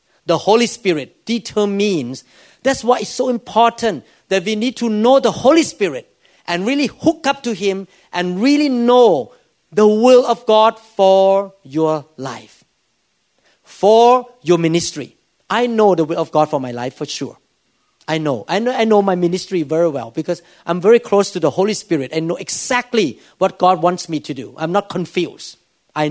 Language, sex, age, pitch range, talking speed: English, male, 50-69, 175-235 Hz, 175 wpm